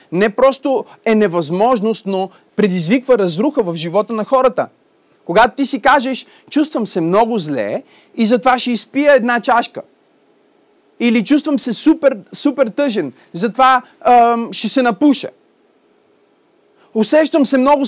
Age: 30-49